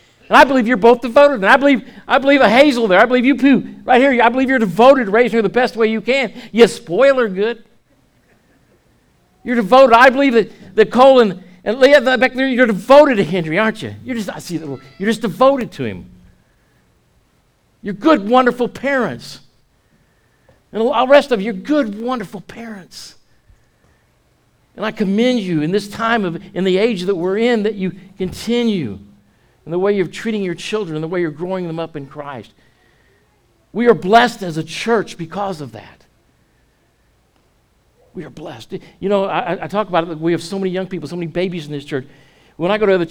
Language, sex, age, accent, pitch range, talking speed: English, male, 60-79, American, 160-235 Hz, 195 wpm